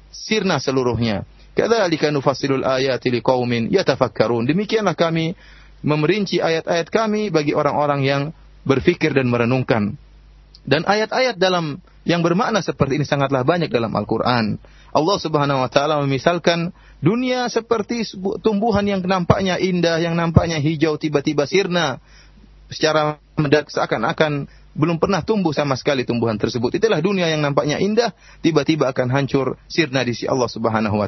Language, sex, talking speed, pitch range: English, male, 125 wpm, 140-190 Hz